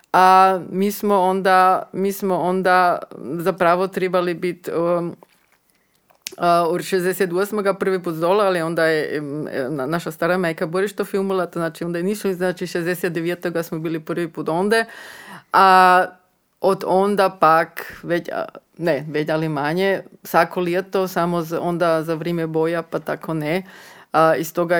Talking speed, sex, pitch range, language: 145 wpm, female, 170-190 Hz, Croatian